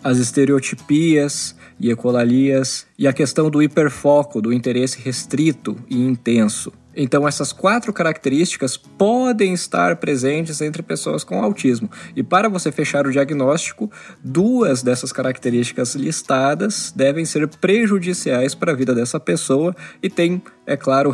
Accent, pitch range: Brazilian, 130-170 Hz